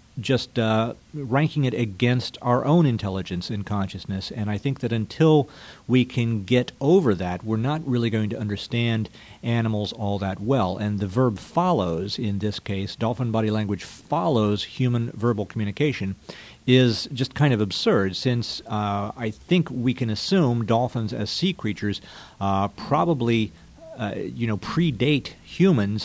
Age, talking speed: 50-69, 155 wpm